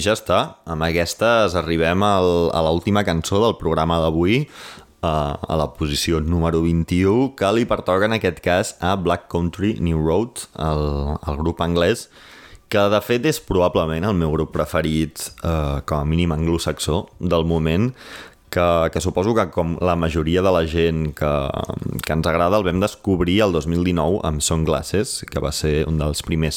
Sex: male